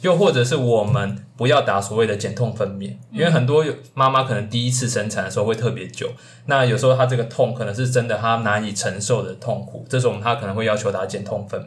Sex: male